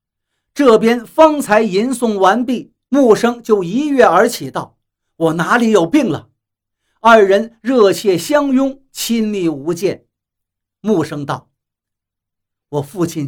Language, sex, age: Chinese, male, 50-69